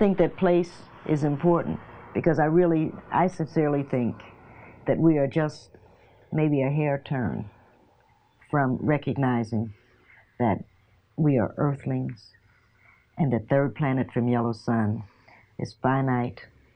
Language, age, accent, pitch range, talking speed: English, 60-79, American, 115-150 Hz, 125 wpm